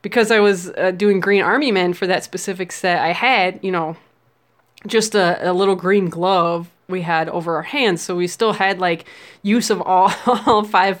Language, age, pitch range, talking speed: English, 20-39, 185-220 Hz, 195 wpm